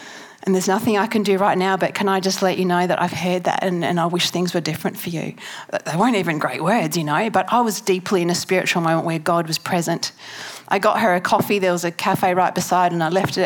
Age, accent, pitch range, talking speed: 40-59, Australian, 175-210 Hz, 275 wpm